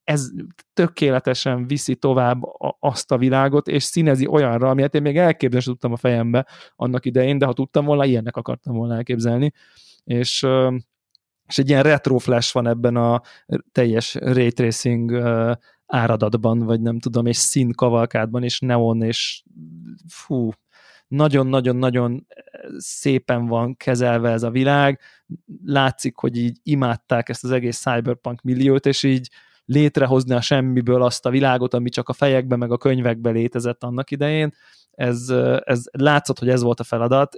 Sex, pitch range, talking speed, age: male, 120-140 Hz, 145 wpm, 20-39